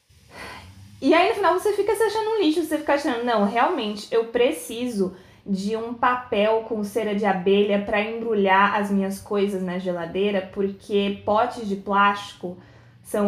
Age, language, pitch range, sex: 20-39, Portuguese, 195-255 Hz, female